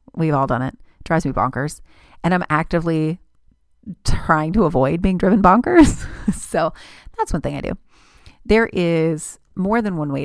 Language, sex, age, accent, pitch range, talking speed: English, female, 30-49, American, 155-200 Hz, 170 wpm